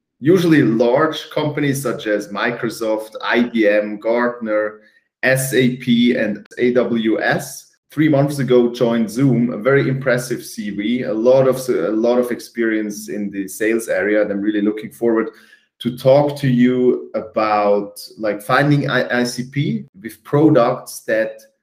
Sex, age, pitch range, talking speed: male, 30-49, 110-135 Hz, 130 wpm